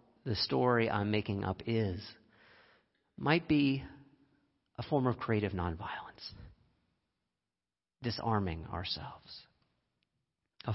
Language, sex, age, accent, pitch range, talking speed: English, male, 40-59, American, 110-170 Hz, 90 wpm